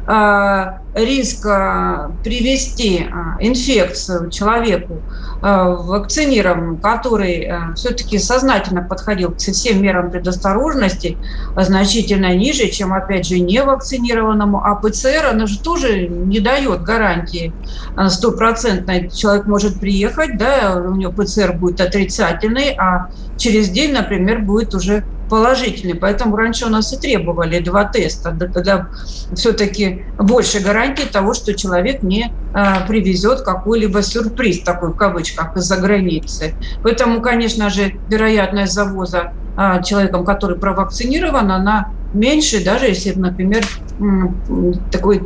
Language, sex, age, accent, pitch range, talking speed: Russian, female, 40-59, native, 185-220 Hz, 110 wpm